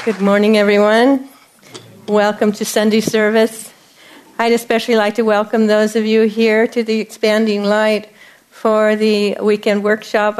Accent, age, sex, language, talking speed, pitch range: American, 50-69, female, English, 140 wpm, 195-225 Hz